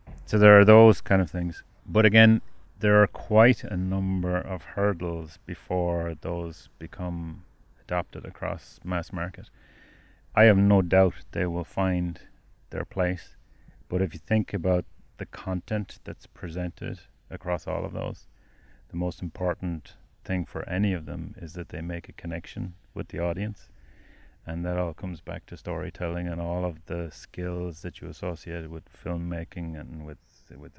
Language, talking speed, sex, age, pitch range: English, 160 wpm, male, 30-49, 85-95 Hz